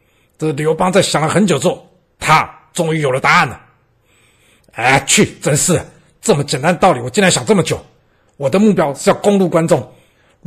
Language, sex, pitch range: Chinese, male, 150-195 Hz